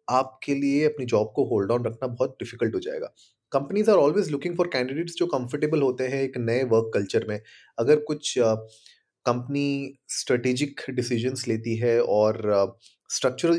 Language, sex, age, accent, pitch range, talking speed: Hindi, male, 30-49, native, 115-145 Hz, 160 wpm